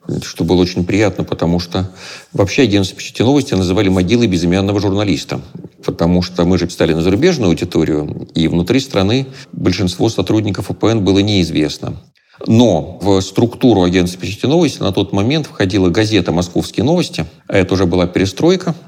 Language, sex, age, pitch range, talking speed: Russian, male, 40-59, 90-110 Hz, 155 wpm